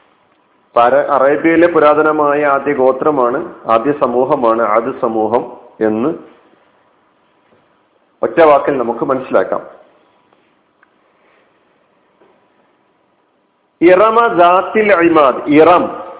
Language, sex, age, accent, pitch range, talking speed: Malayalam, male, 50-69, native, 140-190 Hz, 50 wpm